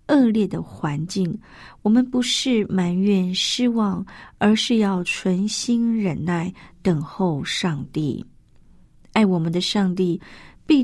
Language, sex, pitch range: Chinese, female, 170-215 Hz